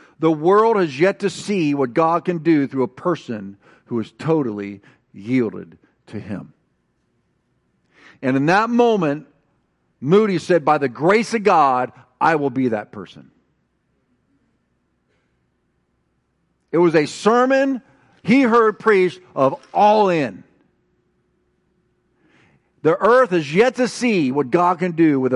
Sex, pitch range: male, 125-180 Hz